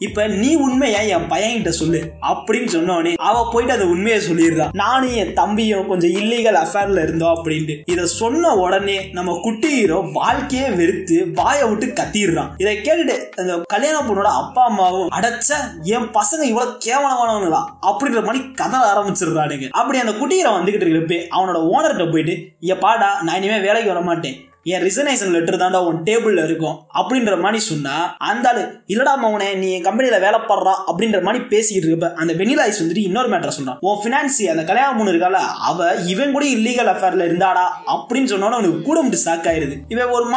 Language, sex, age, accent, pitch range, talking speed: Tamil, male, 20-39, native, 175-250 Hz, 115 wpm